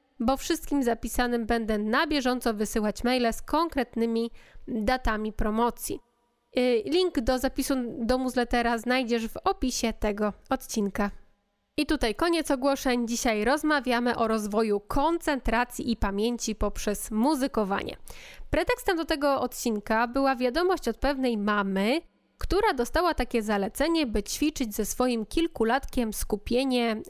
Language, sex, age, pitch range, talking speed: Polish, female, 20-39, 230-285 Hz, 120 wpm